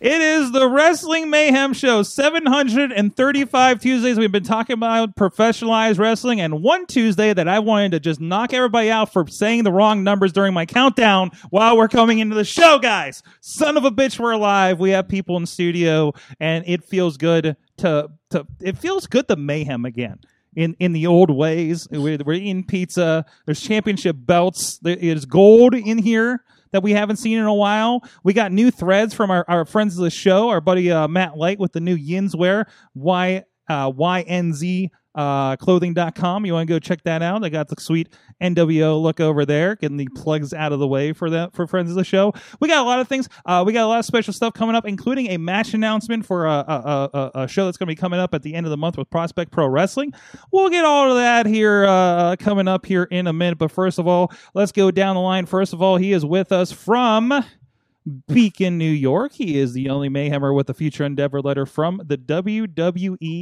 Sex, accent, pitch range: male, American, 165-220 Hz